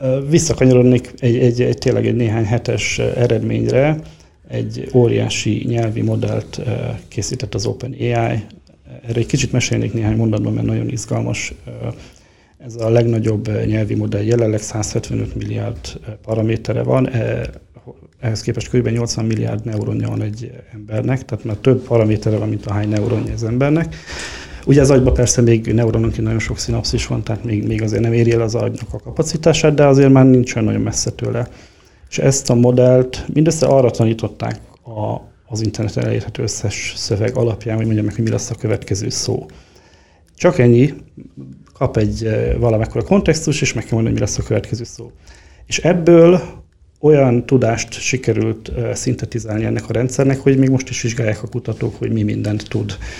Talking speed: 160 wpm